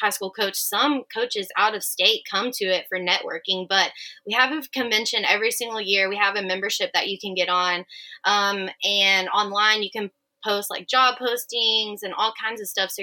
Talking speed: 205 wpm